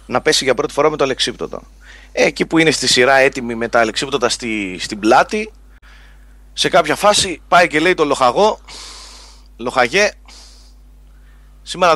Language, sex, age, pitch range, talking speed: Greek, male, 30-49, 115-195 Hz, 155 wpm